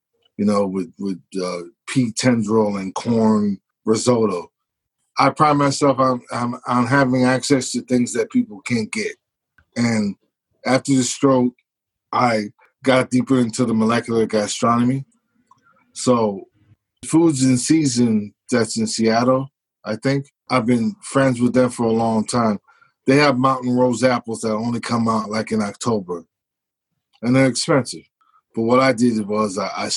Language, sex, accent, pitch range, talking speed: English, male, American, 115-140 Hz, 145 wpm